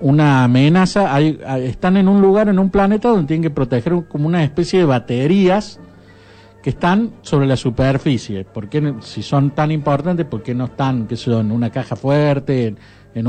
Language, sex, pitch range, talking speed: English, male, 115-185 Hz, 180 wpm